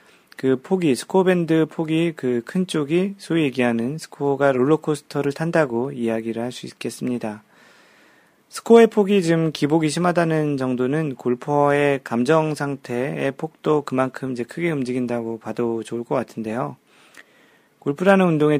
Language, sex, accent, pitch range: Korean, male, native, 125-160 Hz